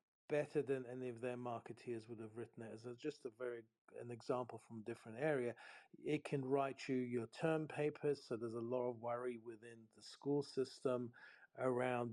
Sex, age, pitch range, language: male, 50-69, 120-130 Hz, English